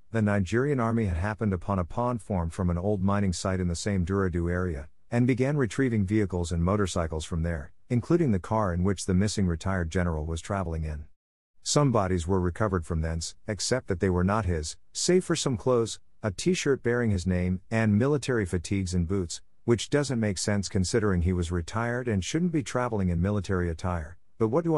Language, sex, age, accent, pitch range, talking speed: English, male, 50-69, American, 90-115 Hz, 205 wpm